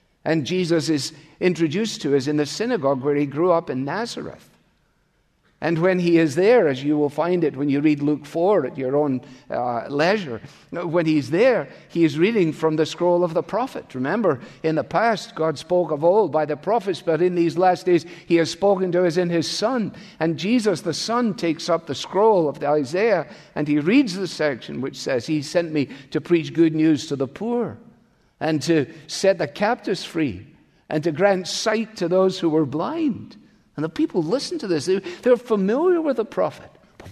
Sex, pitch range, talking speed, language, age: male, 140-185 Hz, 200 wpm, English, 50-69